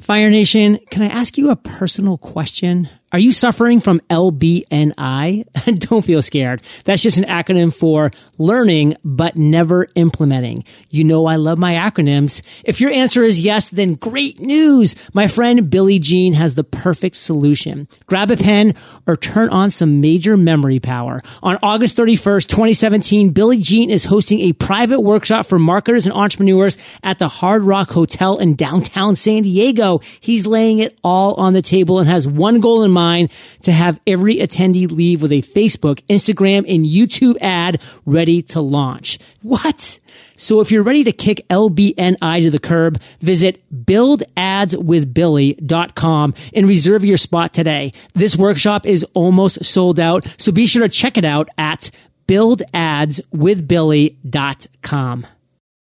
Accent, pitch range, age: American, 160-210 Hz, 30-49